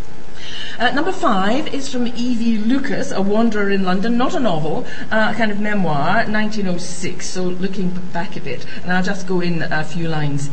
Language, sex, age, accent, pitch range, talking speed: English, female, 50-69, British, 150-205 Hz, 175 wpm